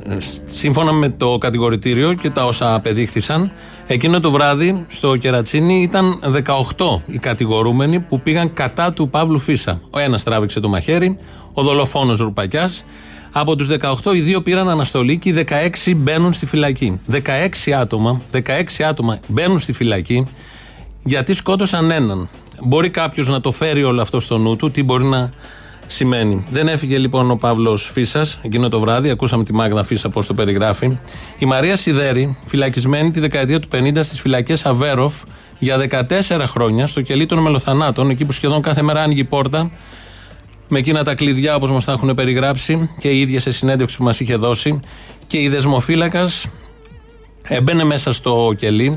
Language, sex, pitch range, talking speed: Greek, male, 120-155 Hz, 165 wpm